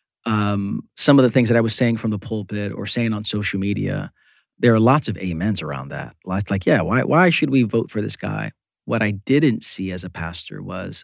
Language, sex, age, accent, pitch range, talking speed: English, male, 40-59, American, 95-120 Hz, 230 wpm